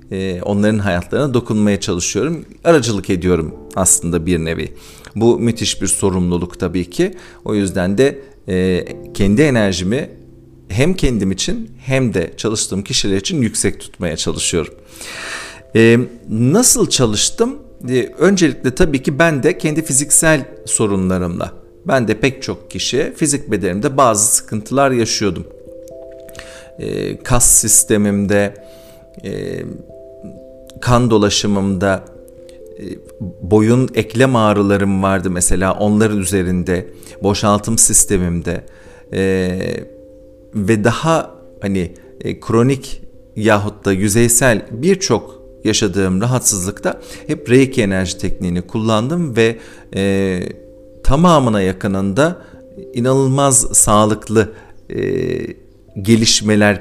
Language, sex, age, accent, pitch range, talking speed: Turkish, male, 50-69, native, 95-130 Hz, 95 wpm